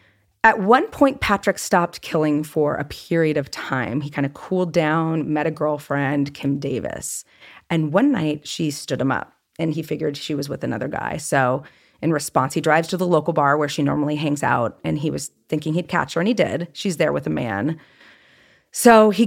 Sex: female